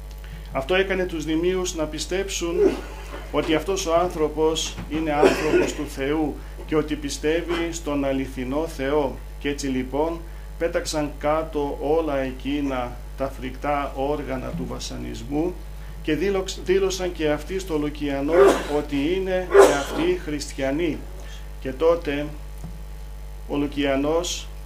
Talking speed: 115 wpm